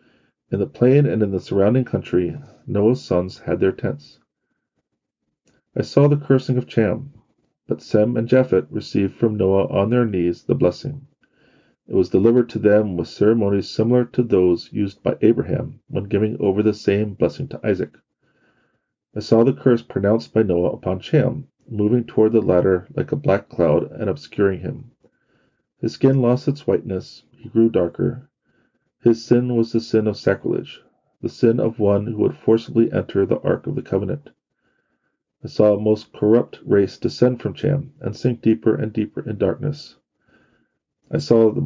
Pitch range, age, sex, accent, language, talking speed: 100-125 Hz, 40-59, male, American, English, 170 wpm